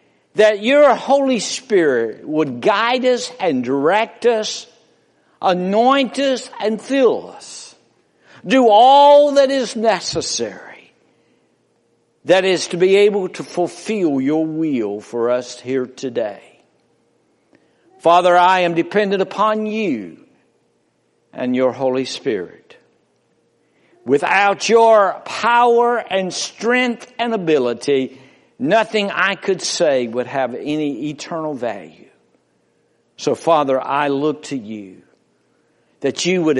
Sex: male